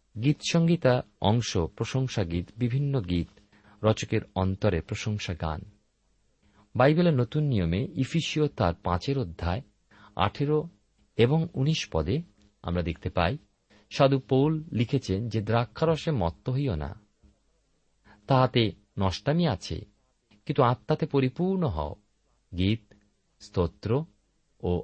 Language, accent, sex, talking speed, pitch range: Bengali, native, male, 100 wpm, 100-145 Hz